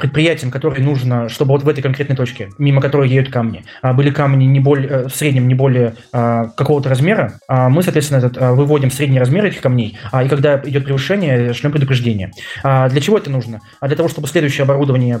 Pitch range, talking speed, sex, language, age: 125-150 Hz, 180 wpm, male, Russian, 20-39